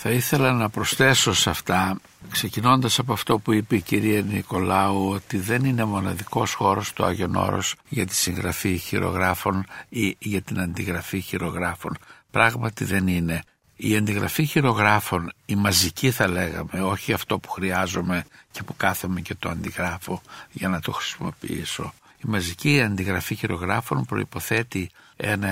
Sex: male